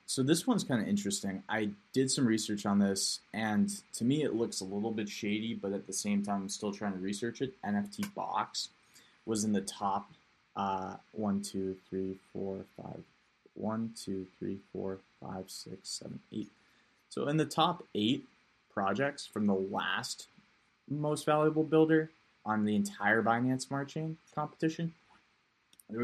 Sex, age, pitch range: male, 20-39, 100-130 Hz